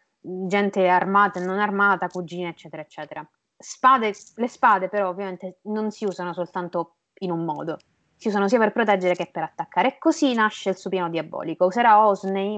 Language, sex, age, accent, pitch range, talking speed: Italian, female, 20-39, native, 175-215 Hz, 175 wpm